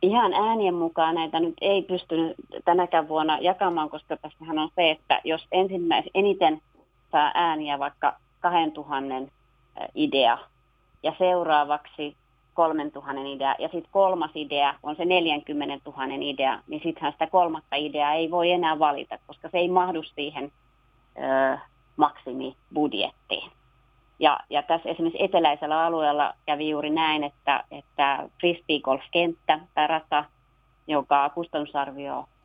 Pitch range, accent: 140-165 Hz, native